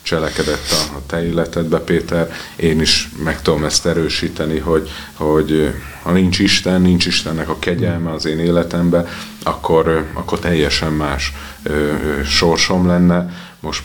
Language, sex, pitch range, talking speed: Hungarian, male, 75-80 Hz, 130 wpm